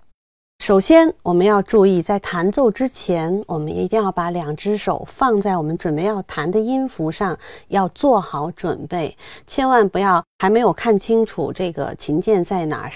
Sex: female